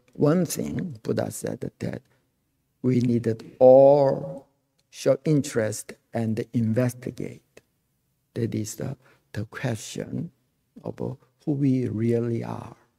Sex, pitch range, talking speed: male, 120-140 Hz, 100 wpm